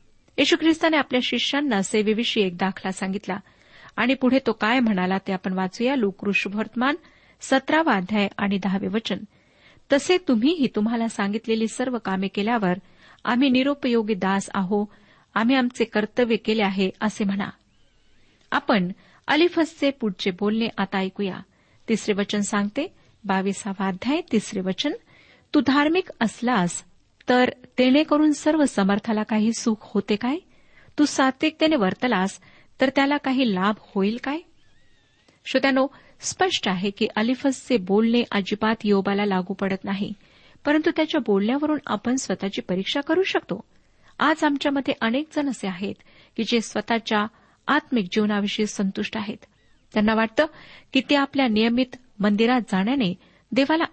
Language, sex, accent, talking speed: Marathi, female, native, 125 wpm